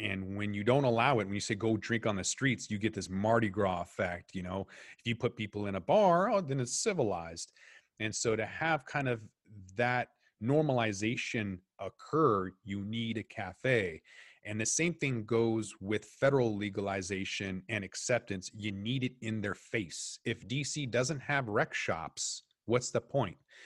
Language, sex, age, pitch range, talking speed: English, male, 30-49, 105-135 Hz, 180 wpm